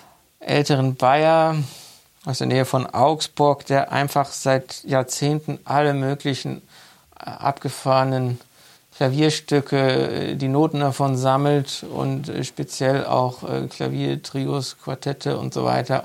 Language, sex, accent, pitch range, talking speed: German, male, German, 130-145 Hz, 100 wpm